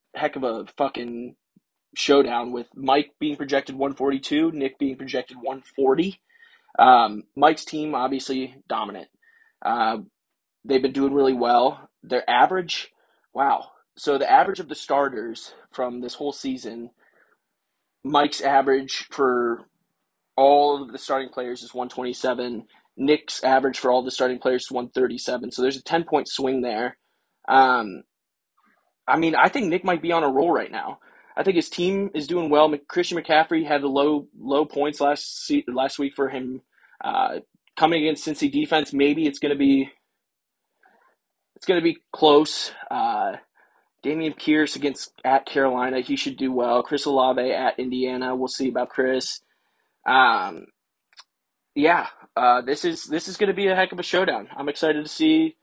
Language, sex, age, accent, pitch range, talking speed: English, male, 20-39, American, 130-170 Hz, 155 wpm